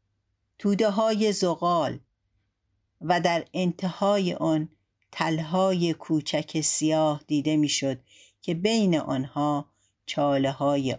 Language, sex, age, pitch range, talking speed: Persian, female, 50-69, 130-195 Hz, 95 wpm